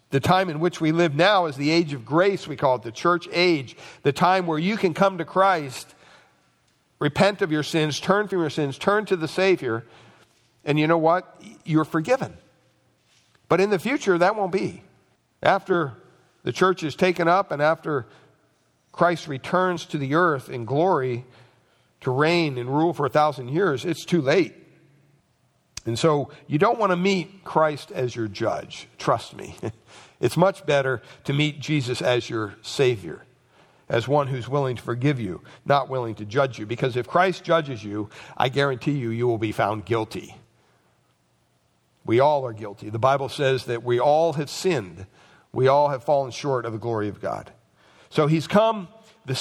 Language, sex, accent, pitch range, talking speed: English, male, American, 125-175 Hz, 180 wpm